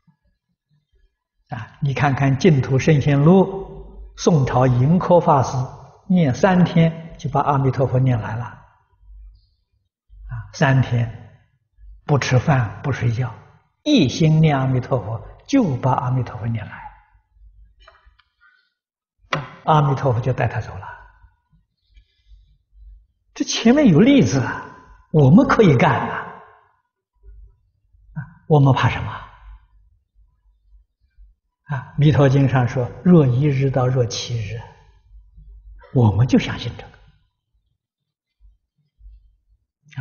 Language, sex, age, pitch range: Chinese, male, 60-79, 110-160 Hz